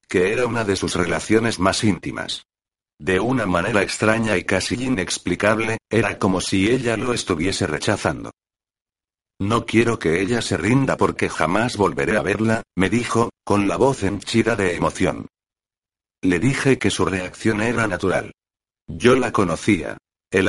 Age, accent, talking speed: 60-79, Spanish, 150 wpm